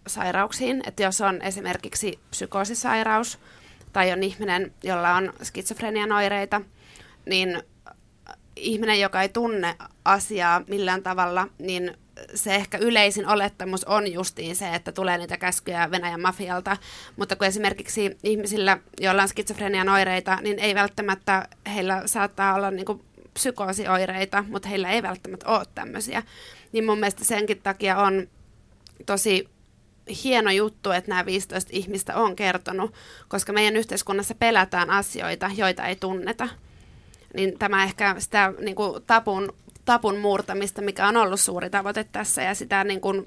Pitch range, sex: 190-210 Hz, female